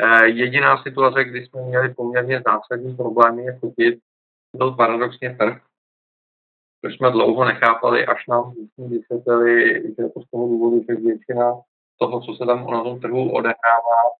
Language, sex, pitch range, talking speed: Czech, male, 115-125 Hz, 150 wpm